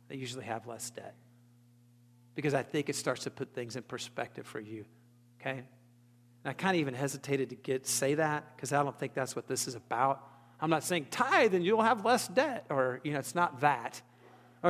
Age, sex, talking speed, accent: 40-59, male, 215 wpm, American